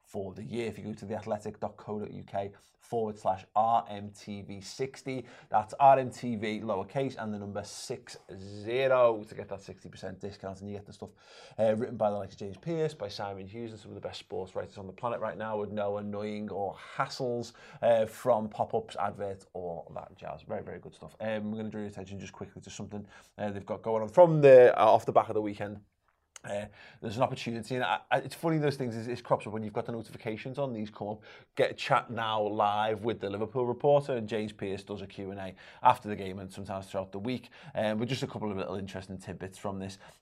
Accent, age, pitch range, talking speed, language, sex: British, 20-39, 100-115 Hz, 225 wpm, English, male